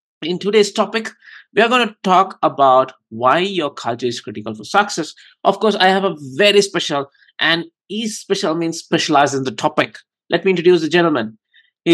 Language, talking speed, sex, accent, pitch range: English, 185 wpm, male, Indian, 145-195 Hz